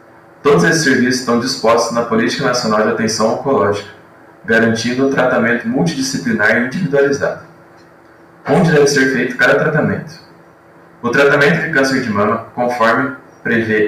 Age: 20-39